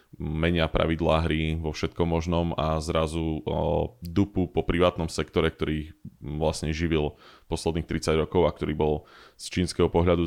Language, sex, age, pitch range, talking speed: Slovak, male, 20-39, 80-85 Hz, 145 wpm